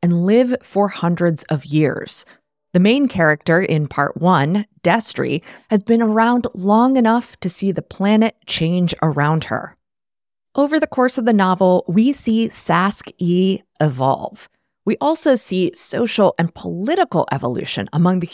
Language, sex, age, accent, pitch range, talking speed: English, female, 20-39, American, 165-230 Hz, 145 wpm